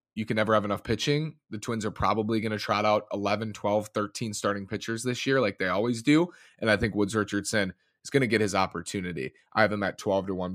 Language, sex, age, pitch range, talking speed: English, male, 30-49, 100-120 Hz, 235 wpm